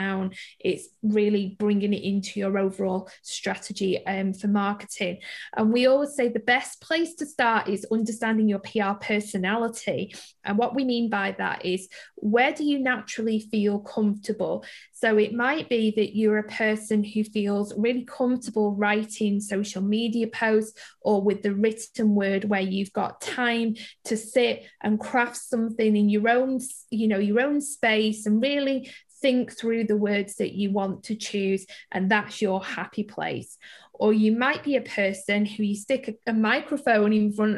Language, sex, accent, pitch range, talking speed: English, female, British, 205-240 Hz, 170 wpm